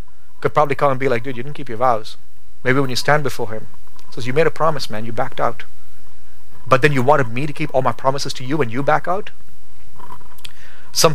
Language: English